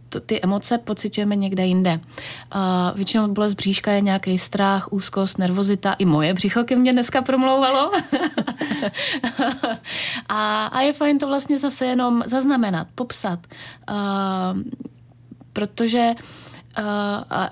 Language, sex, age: Czech, female, 30-49